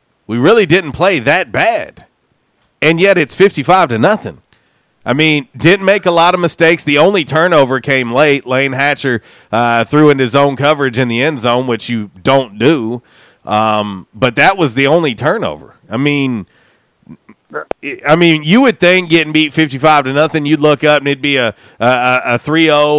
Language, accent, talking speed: English, American, 185 wpm